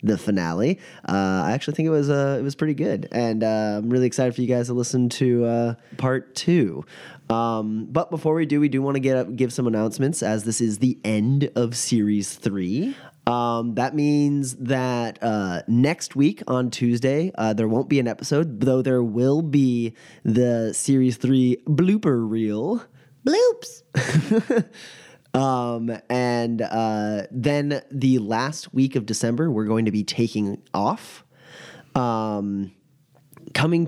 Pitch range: 115-145 Hz